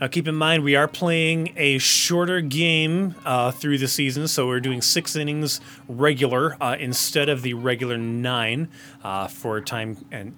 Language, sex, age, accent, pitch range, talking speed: English, male, 30-49, American, 130-170 Hz, 175 wpm